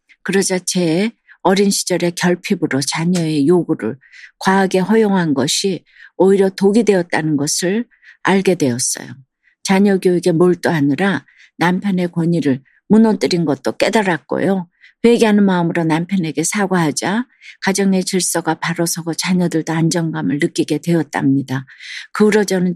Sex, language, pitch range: female, Korean, 160-195 Hz